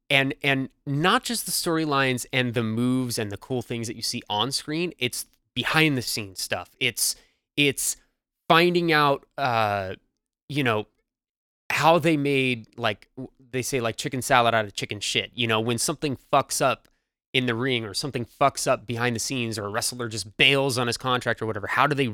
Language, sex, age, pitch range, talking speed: English, male, 20-39, 115-145 Hz, 195 wpm